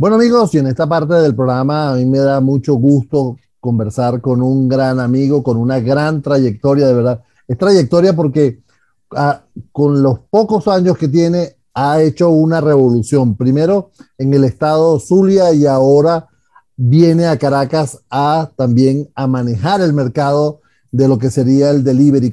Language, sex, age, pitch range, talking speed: Spanish, male, 40-59, 130-165 Hz, 160 wpm